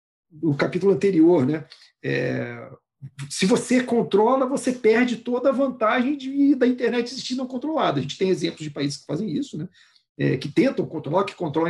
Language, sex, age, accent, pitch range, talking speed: Portuguese, male, 50-69, Brazilian, 145-220 Hz, 175 wpm